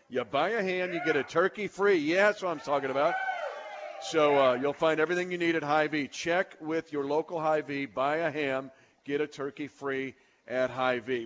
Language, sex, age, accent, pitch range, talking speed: English, male, 50-69, American, 155-205 Hz, 205 wpm